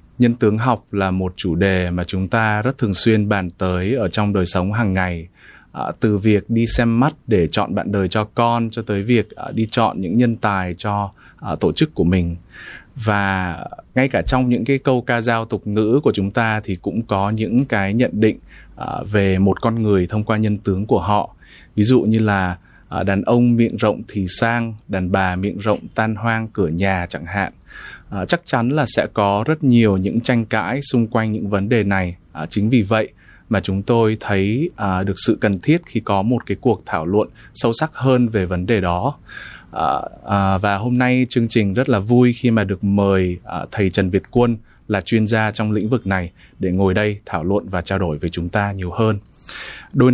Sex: male